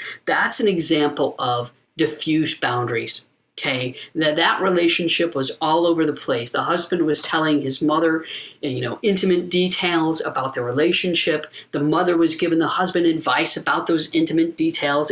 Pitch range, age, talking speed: 140-170 Hz, 50-69, 155 wpm